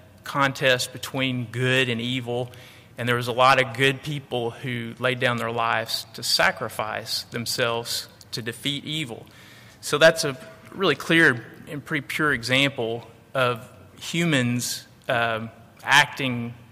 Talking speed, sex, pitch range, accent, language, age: 135 wpm, male, 115-140 Hz, American, English, 30-49